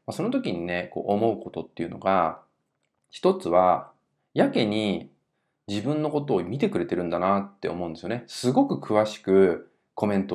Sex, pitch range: male, 95-130 Hz